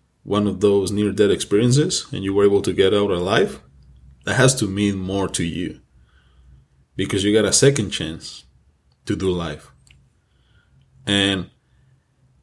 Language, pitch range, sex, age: English, 90-115 Hz, male, 20-39